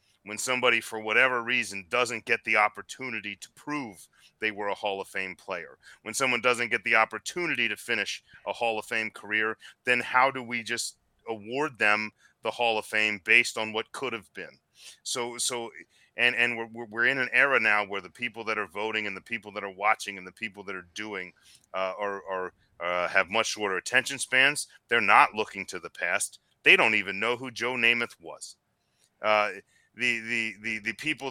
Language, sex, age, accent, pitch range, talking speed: English, male, 30-49, American, 105-120 Hz, 200 wpm